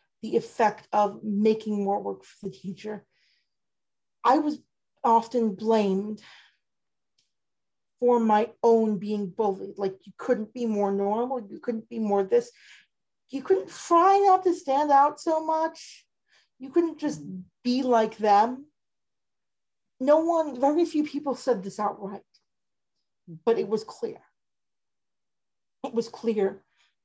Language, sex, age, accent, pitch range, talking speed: English, female, 40-59, American, 210-275 Hz, 130 wpm